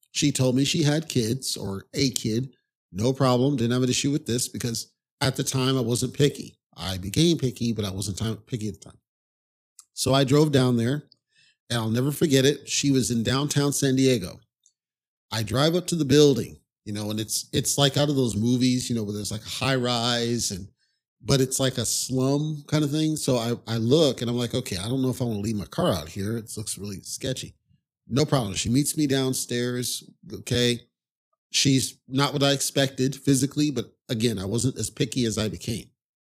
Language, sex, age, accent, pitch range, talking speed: English, male, 40-59, American, 115-140 Hz, 210 wpm